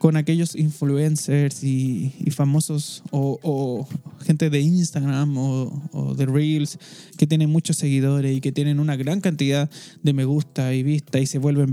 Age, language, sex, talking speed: 20-39, Spanish, male, 170 wpm